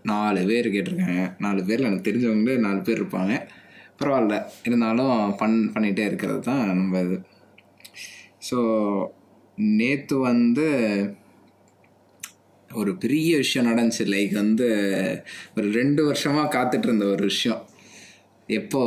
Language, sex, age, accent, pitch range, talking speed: Tamil, male, 20-39, native, 100-120 Hz, 110 wpm